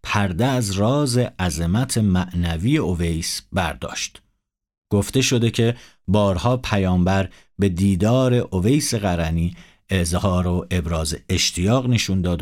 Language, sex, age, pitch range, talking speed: Persian, male, 50-69, 90-120 Hz, 110 wpm